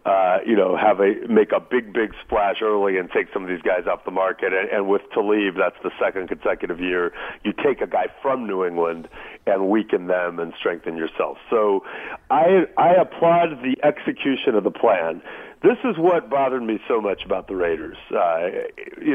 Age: 40-59